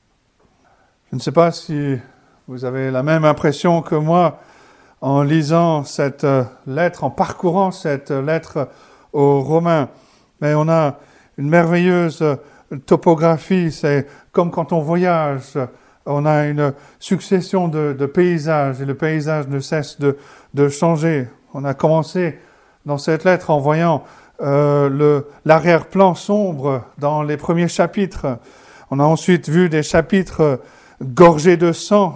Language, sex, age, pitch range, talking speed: French, male, 50-69, 145-170 Hz, 135 wpm